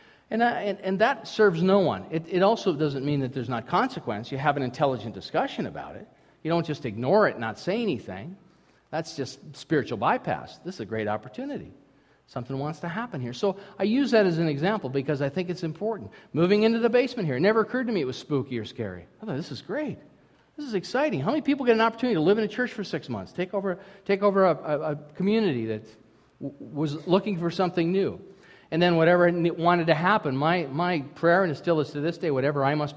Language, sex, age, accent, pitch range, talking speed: English, male, 40-59, American, 130-185 Hz, 235 wpm